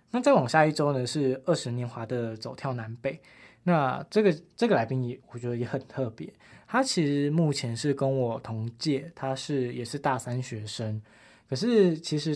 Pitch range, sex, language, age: 120-150 Hz, male, Chinese, 20-39